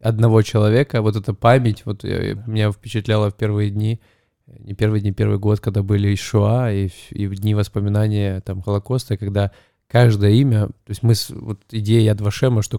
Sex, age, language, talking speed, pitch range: male, 20-39, Russian, 185 wpm, 105-120 Hz